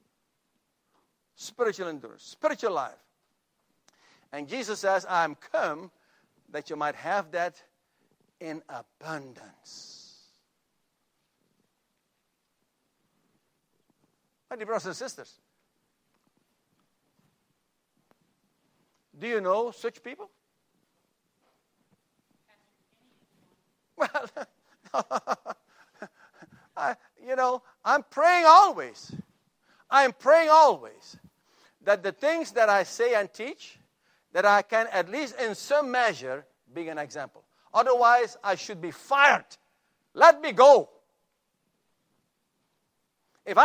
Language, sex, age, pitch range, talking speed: English, male, 60-79, 190-285 Hz, 90 wpm